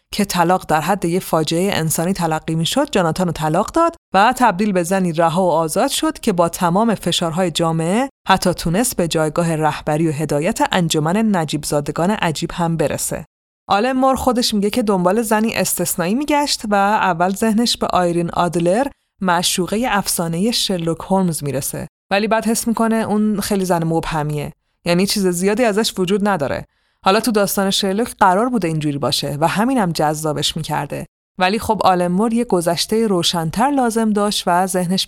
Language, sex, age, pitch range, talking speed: Persian, female, 30-49, 165-215 Hz, 165 wpm